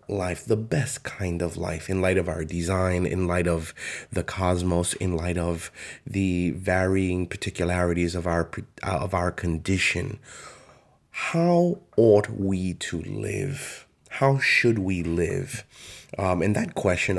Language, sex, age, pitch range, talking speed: English, male, 30-49, 85-100 Hz, 140 wpm